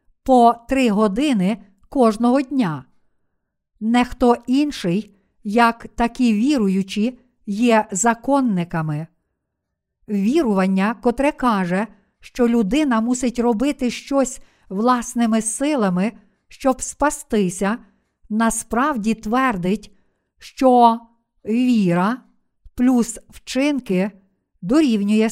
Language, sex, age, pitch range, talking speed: Ukrainian, female, 50-69, 210-255 Hz, 75 wpm